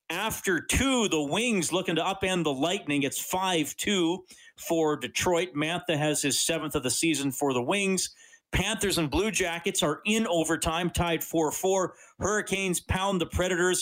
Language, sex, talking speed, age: English, male, 155 wpm, 50-69